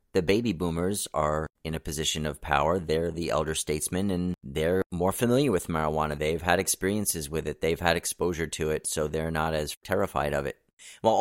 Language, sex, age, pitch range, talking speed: English, male, 30-49, 80-95 Hz, 200 wpm